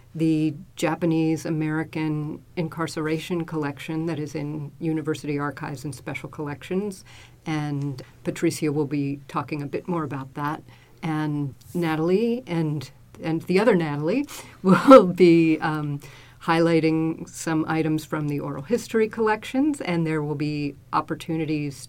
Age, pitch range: 50-69, 145-175 Hz